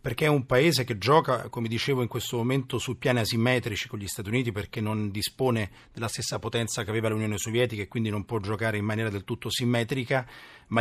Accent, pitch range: native, 115-135 Hz